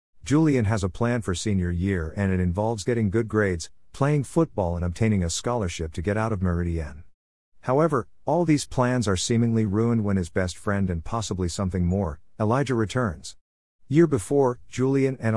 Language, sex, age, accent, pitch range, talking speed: English, male, 50-69, American, 90-115 Hz, 175 wpm